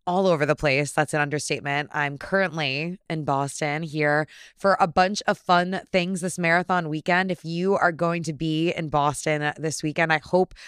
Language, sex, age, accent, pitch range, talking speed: English, female, 20-39, American, 150-180 Hz, 185 wpm